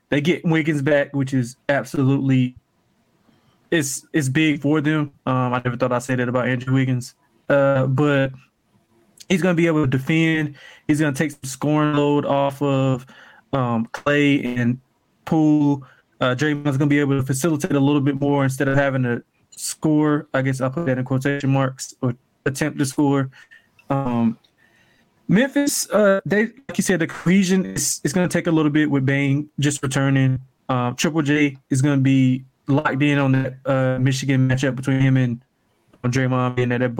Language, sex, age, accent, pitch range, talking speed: English, male, 20-39, American, 130-145 Hz, 180 wpm